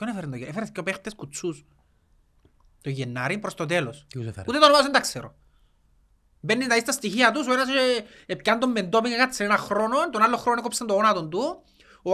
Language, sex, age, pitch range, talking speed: Greek, male, 30-49, 160-255 Hz, 185 wpm